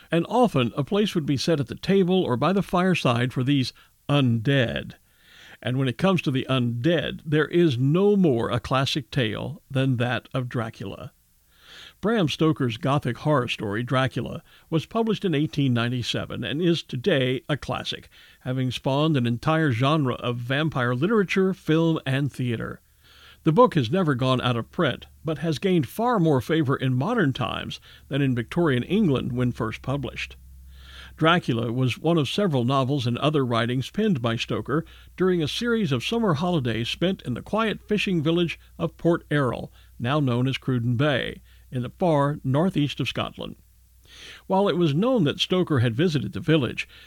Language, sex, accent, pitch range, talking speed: English, male, American, 125-170 Hz, 170 wpm